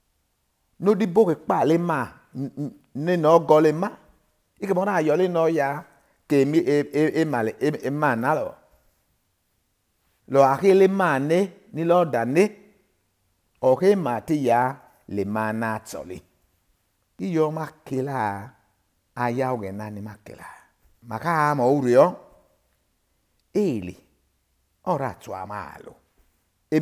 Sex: male